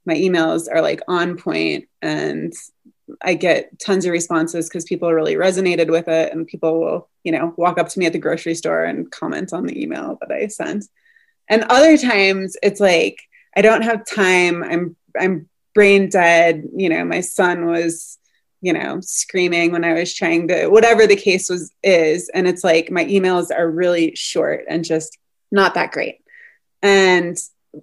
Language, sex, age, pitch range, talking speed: English, female, 20-39, 165-200 Hz, 180 wpm